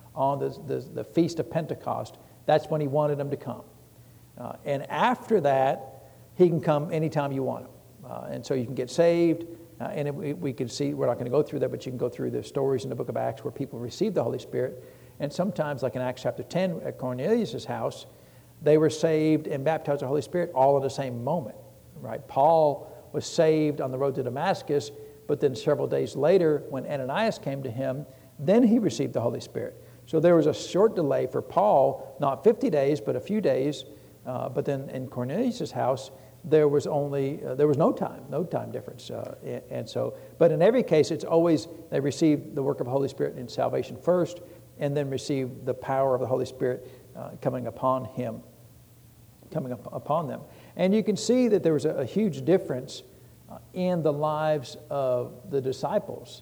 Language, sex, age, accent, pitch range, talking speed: English, male, 60-79, American, 135-165 Hz, 210 wpm